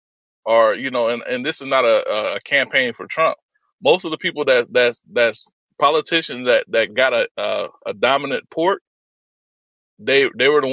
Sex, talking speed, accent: male, 185 wpm, American